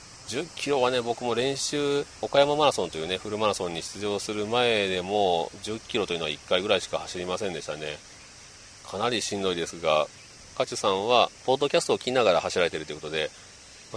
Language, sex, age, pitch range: Japanese, male, 40-59, 90-120 Hz